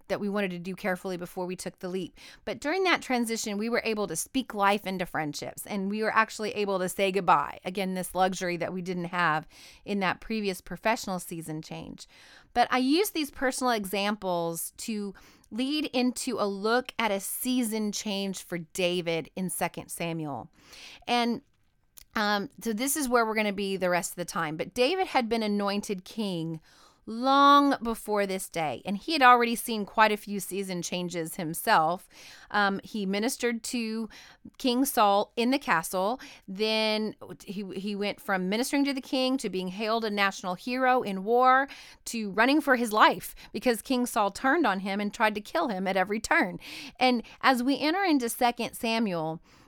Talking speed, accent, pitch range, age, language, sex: 185 wpm, American, 185-245 Hz, 30-49, English, female